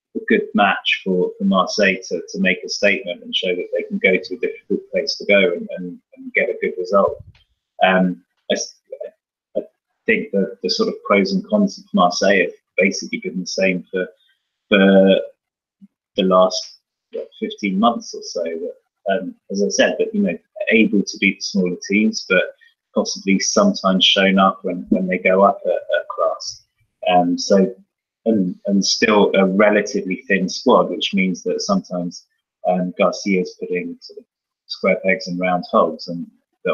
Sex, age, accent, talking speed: male, 30-49, British, 180 wpm